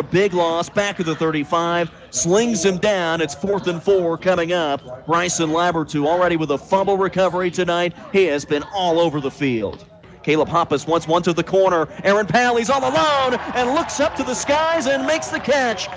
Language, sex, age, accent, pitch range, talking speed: English, male, 40-59, American, 165-220 Hz, 200 wpm